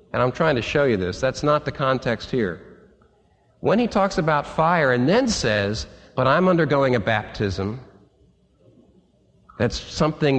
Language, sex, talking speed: English, male, 155 wpm